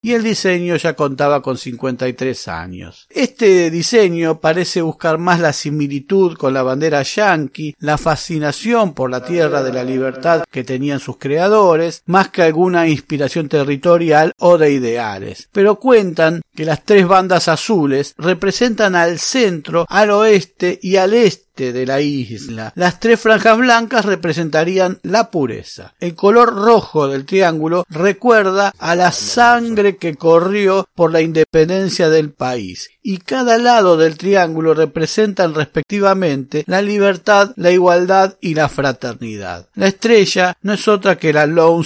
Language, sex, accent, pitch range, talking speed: Spanish, male, Argentinian, 140-190 Hz, 145 wpm